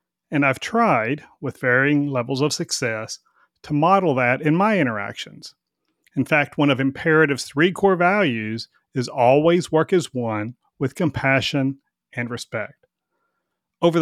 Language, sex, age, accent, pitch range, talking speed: English, male, 40-59, American, 130-160 Hz, 135 wpm